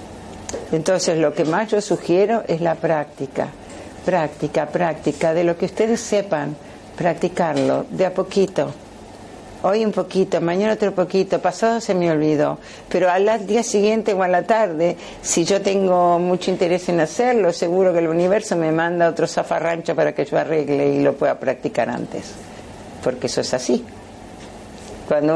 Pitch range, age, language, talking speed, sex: 150-195 Hz, 60-79, Spanish, 160 wpm, female